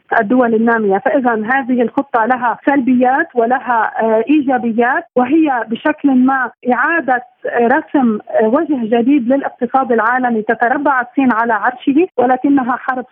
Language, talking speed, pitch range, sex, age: Arabic, 110 wpm, 235-265 Hz, female, 40-59